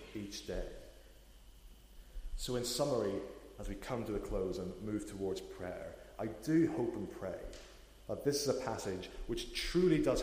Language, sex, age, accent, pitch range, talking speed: English, male, 30-49, British, 95-120 Hz, 165 wpm